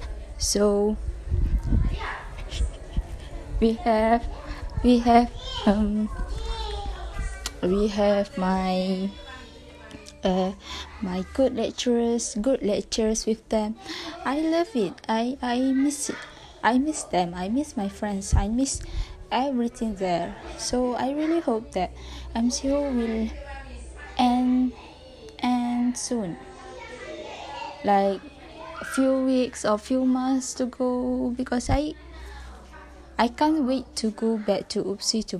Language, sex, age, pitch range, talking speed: English, female, 20-39, 190-255 Hz, 110 wpm